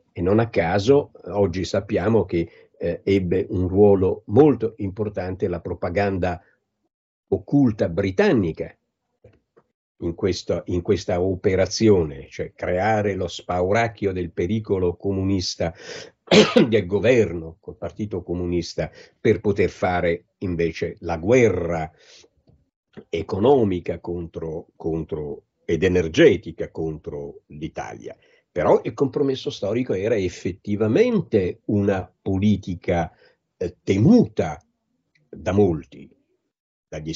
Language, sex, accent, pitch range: Italian, male, native, 90-110 Hz